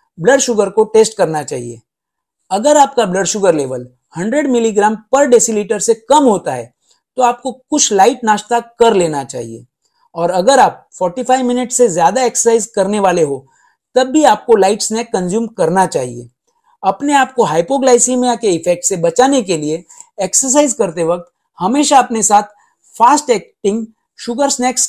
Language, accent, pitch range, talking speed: Hindi, native, 190-245 Hz, 50 wpm